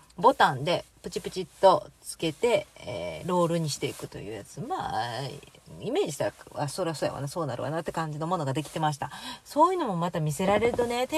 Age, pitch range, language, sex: 30-49, 170-235 Hz, Japanese, female